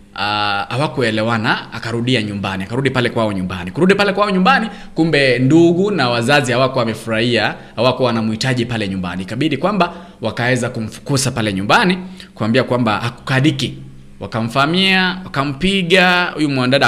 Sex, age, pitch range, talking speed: male, 20-39, 110-145 Hz, 120 wpm